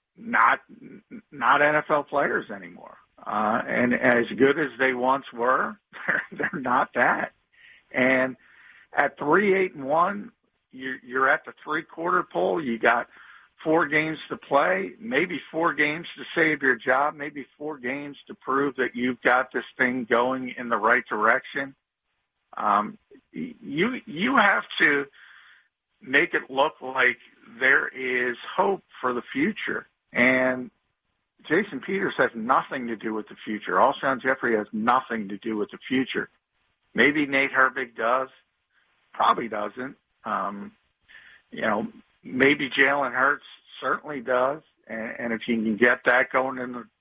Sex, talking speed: male, 150 wpm